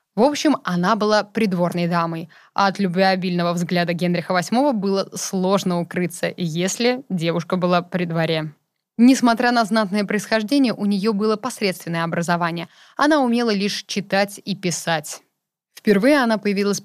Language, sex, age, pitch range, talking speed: Russian, female, 20-39, 175-220 Hz, 135 wpm